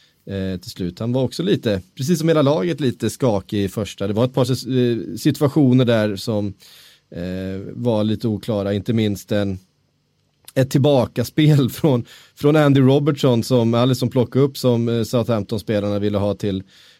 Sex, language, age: male, Swedish, 30-49